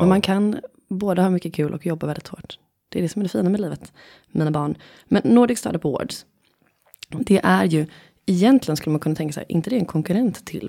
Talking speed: 230 wpm